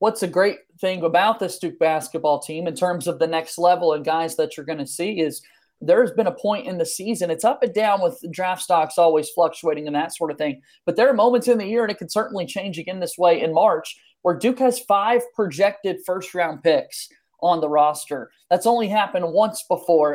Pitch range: 165-190 Hz